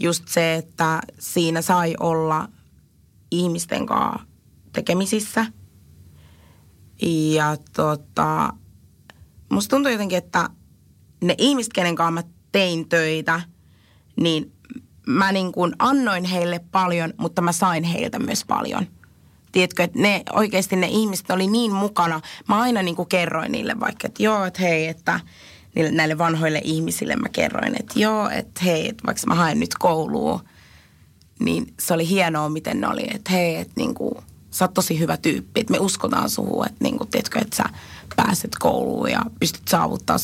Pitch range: 150-215 Hz